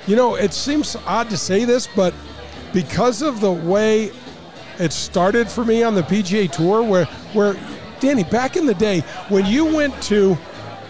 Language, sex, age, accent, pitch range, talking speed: English, male, 50-69, American, 200-260 Hz, 175 wpm